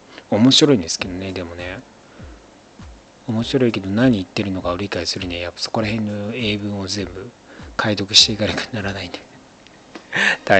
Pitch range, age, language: 95-125 Hz, 40-59, Japanese